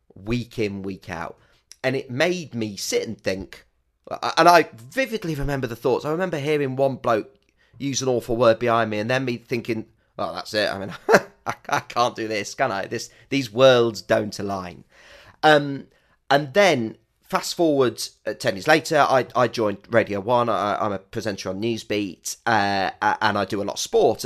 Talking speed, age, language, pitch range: 190 wpm, 30-49, English, 110-145 Hz